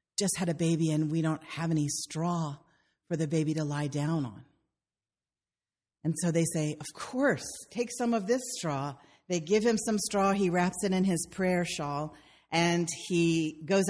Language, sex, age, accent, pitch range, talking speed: English, female, 40-59, American, 165-225 Hz, 185 wpm